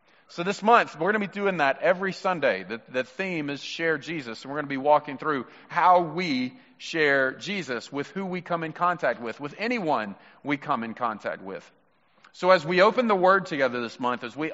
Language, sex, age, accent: English, male, 40-59, American